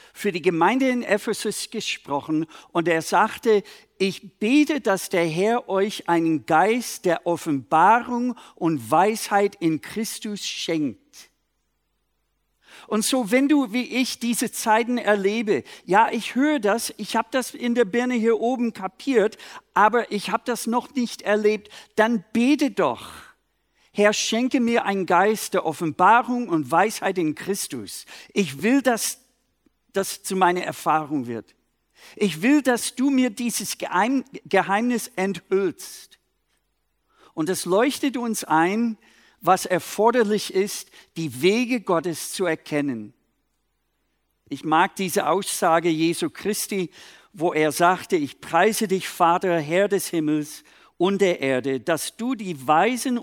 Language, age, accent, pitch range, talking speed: German, 50-69, German, 170-235 Hz, 135 wpm